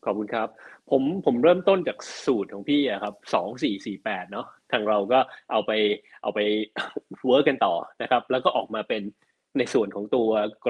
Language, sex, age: Thai, male, 20-39